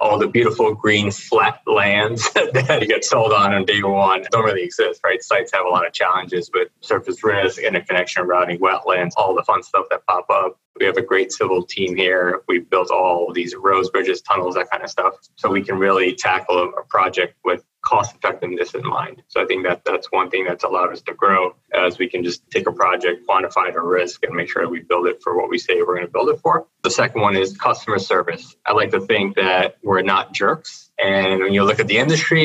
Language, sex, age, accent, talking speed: English, male, 30-49, American, 240 wpm